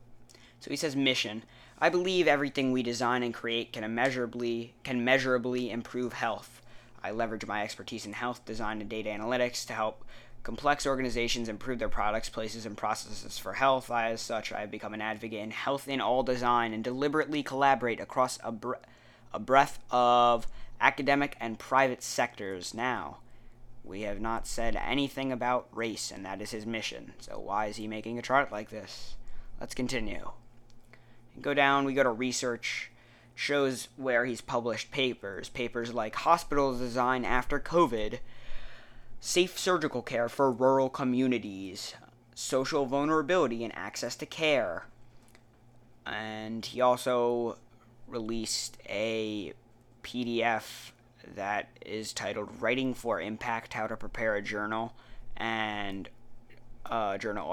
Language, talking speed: English, 140 wpm